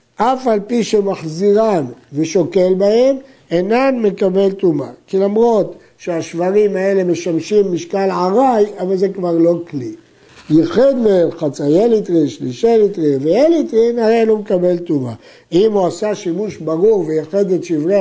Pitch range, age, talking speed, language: 160-215 Hz, 60-79, 135 wpm, Hebrew